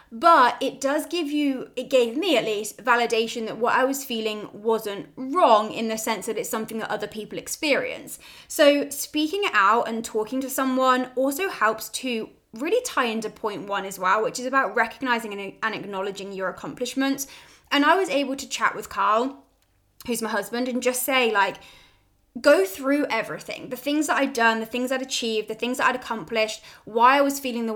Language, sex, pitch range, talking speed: English, female, 220-265 Hz, 195 wpm